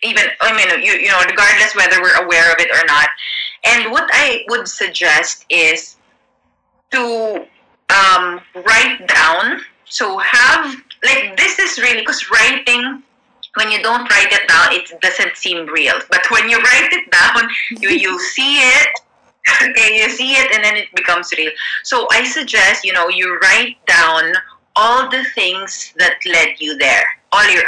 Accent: Filipino